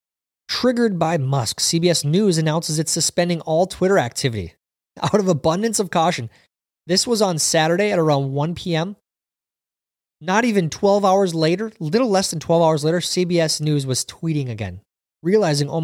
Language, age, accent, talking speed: English, 30-49, American, 160 wpm